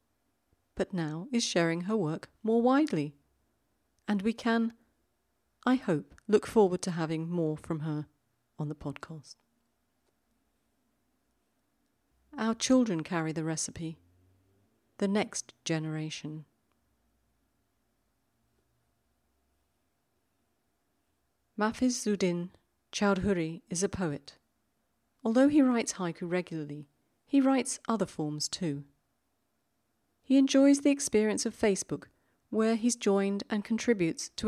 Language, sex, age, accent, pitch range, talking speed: English, female, 40-59, British, 155-230 Hz, 105 wpm